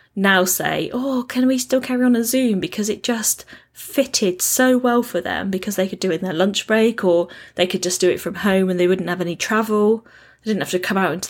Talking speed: 255 wpm